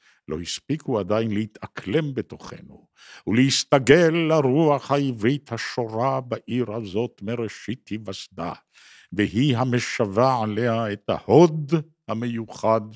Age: 60-79